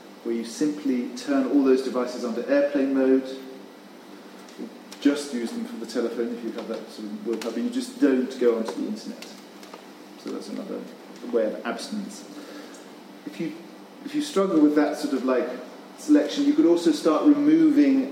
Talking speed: 180 wpm